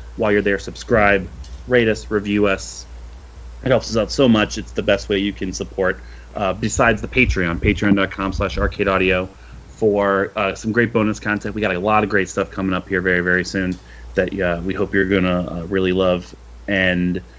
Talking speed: 195 wpm